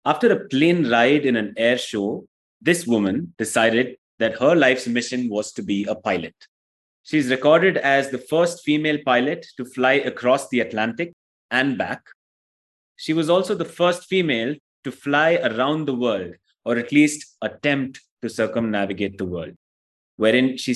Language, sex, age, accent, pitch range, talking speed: English, male, 30-49, Indian, 110-150 Hz, 160 wpm